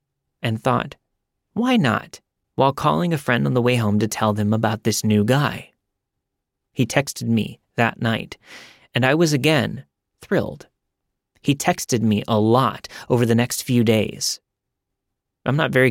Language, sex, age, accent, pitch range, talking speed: English, male, 30-49, American, 110-155 Hz, 160 wpm